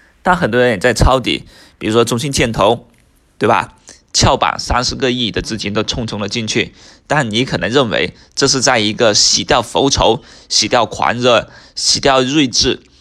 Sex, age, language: male, 20-39, Chinese